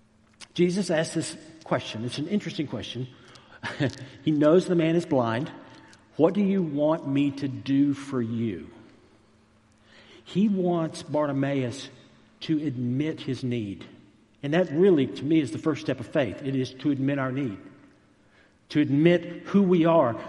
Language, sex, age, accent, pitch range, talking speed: English, male, 60-79, American, 115-165 Hz, 155 wpm